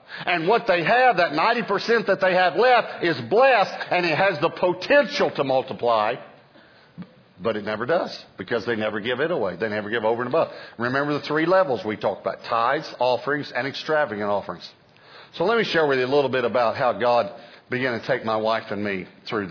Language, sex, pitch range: English, male, 120-165 Hz